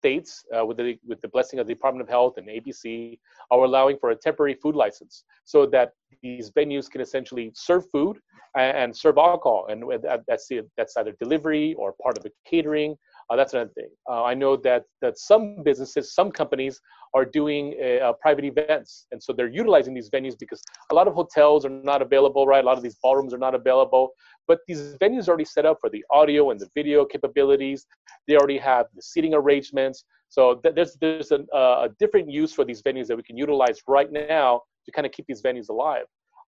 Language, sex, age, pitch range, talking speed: English, male, 30-49, 130-200 Hz, 205 wpm